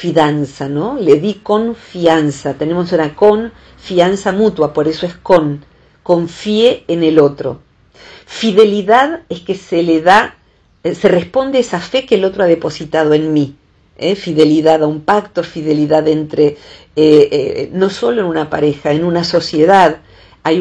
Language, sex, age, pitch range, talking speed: Spanish, female, 50-69, 150-205 Hz, 150 wpm